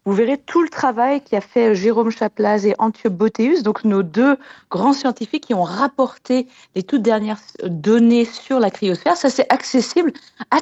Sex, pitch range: female, 200-270 Hz